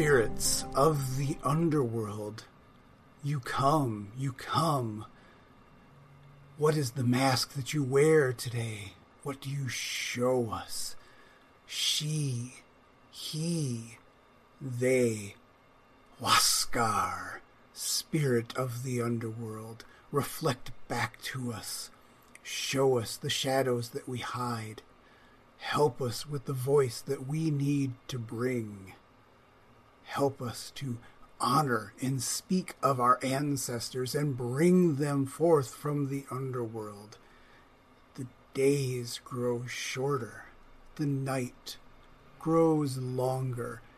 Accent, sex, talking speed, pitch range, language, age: American, male, 100 wpm, 120-140 Hz, English, 40-59